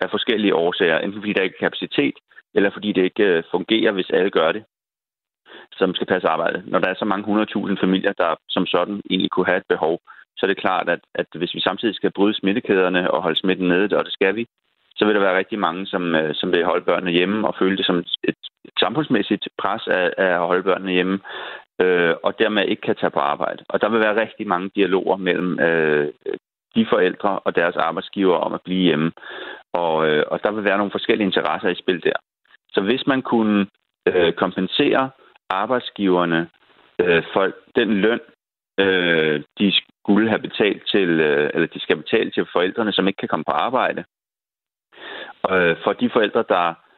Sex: male